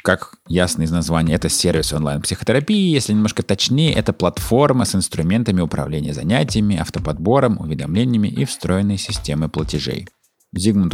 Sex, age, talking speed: male, 30-49, 125 wpm